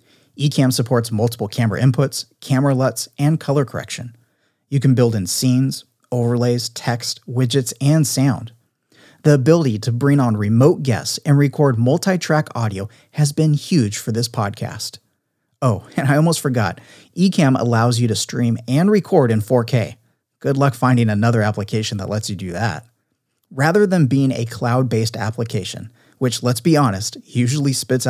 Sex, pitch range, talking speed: male, 115-145 Hz, 155 wpm